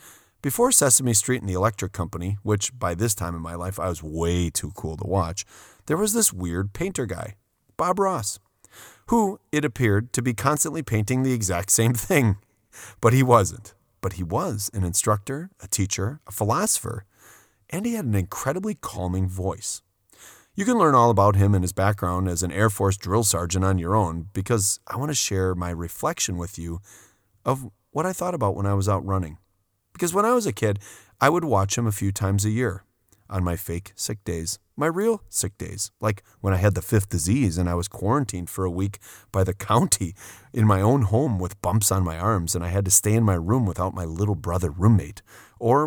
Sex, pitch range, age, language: male, 95-115 Hz, 30-49, English